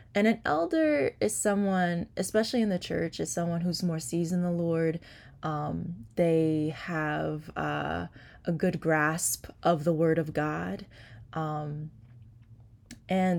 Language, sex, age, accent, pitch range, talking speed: English, female, 20-39, American, 150-180 Hz, 140 wpm